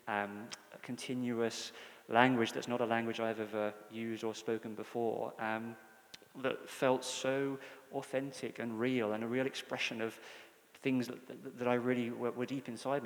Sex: male